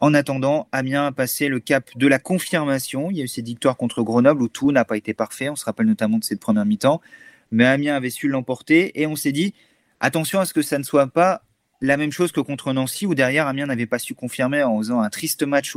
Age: 30-49